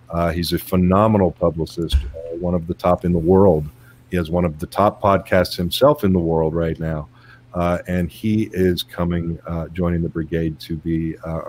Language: English